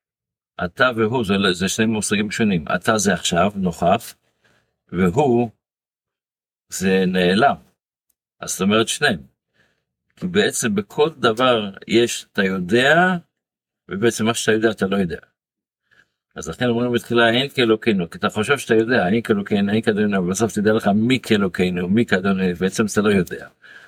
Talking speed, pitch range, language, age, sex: 85 wpm, 95-130 Hz, Hebrew, 60-79, male